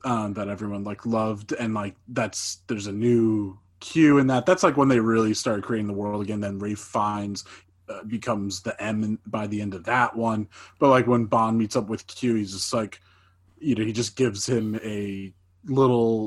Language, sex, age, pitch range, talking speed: English, male, 20-39, 95-115 Hz, 205 wpm